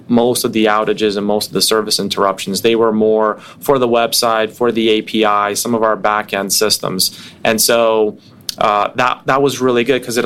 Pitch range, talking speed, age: 105-120 Hz, 200 wpm, 30-49